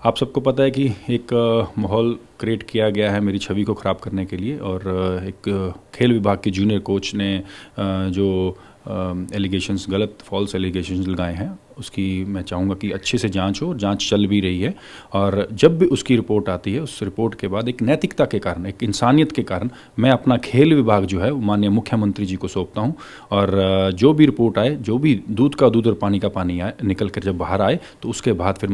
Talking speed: 210 wpm